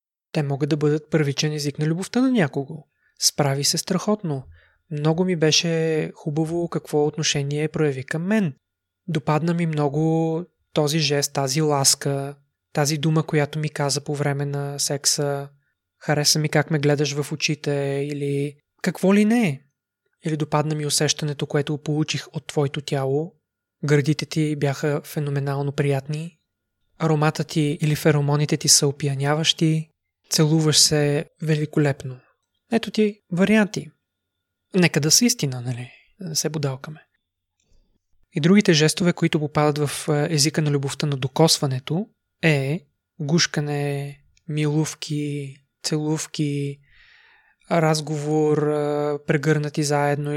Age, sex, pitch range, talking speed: 20-39, male, 145-160 Hz, 125 wpm